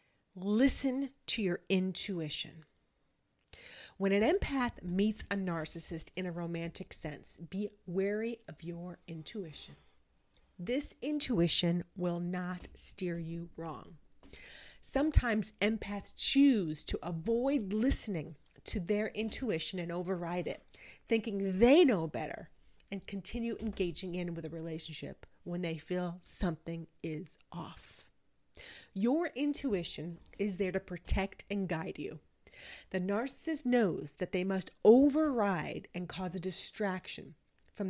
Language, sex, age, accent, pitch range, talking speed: English, female, 40-59, American, 175-220 Hz, 120 wpm